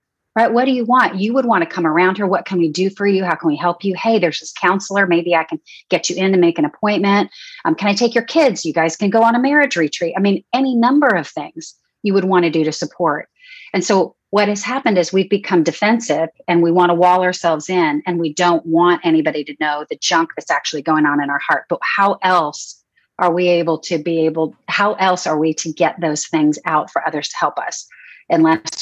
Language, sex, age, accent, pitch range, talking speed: English, female, 30-49, American, 160-200 Hz, 250 wpm